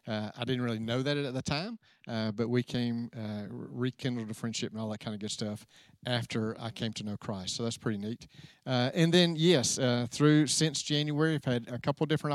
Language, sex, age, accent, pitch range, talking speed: English, male, 50-69, American, 120-145 Hz, 230 wpm